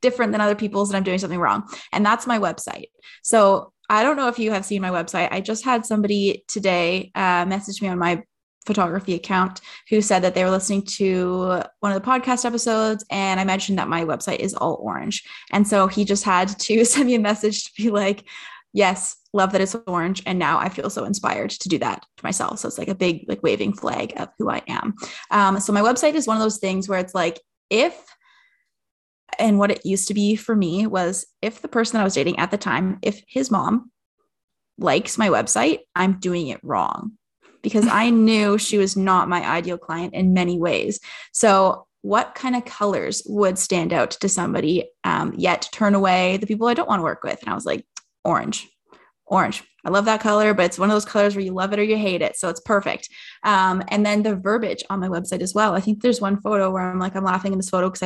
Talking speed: 235 wpm